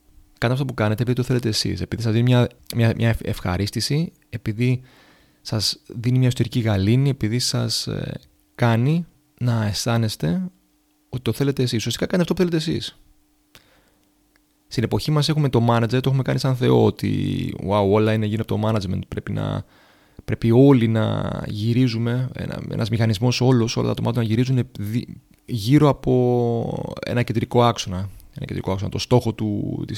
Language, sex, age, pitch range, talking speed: Greek, male, 30-49, 110-130 Hz, 155 wpm